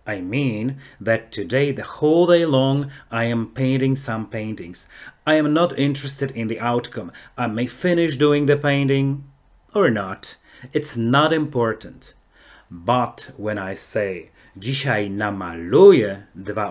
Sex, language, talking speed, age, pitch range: male, Polish, 130 wpm, 30-49, 110-140 Hz